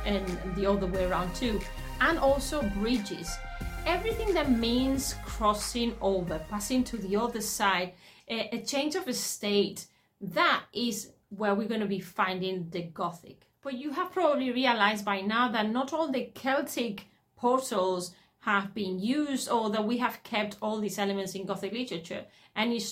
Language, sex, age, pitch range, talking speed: English, female, 30-49, 195-245 Hz, 160 wpm